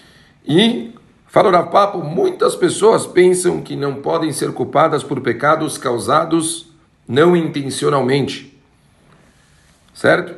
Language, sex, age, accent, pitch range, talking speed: Portuguese, male, 40-59, Brazilian, 140-180 Hz, 110 wpm